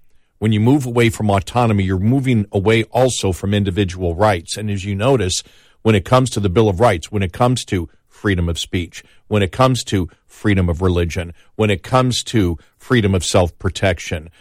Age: 50-69